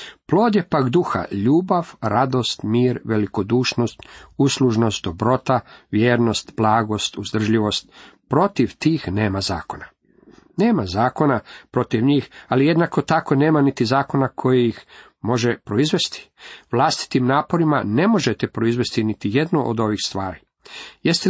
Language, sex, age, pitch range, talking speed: Croatian, male, 50-69, 110-140 Hz, 120 wpm